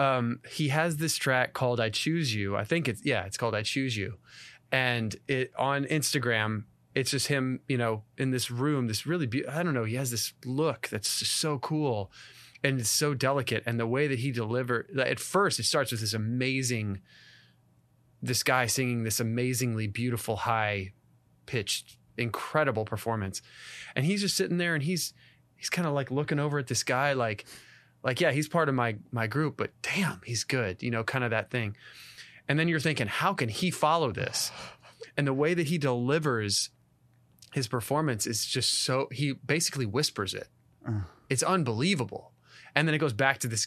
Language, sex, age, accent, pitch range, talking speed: English, male, 20-39, American, 115-145 Hz, 190 wpm